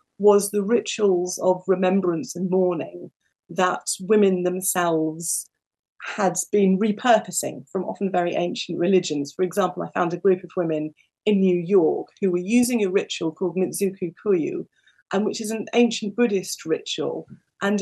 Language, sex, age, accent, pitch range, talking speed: English, female, 40-59, British, 175-210 Hz, 150 wpm